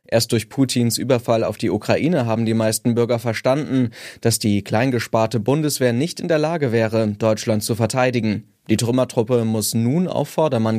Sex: male